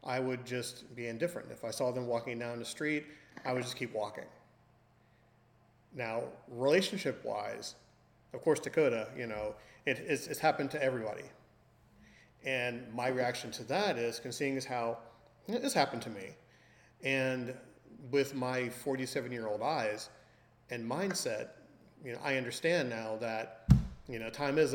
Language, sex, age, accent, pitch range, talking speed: English, male, 40-59, American, 115-135 Hz, 145 wpm